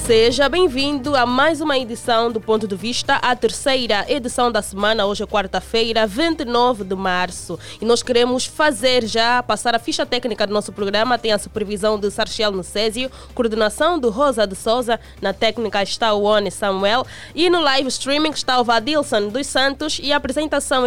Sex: female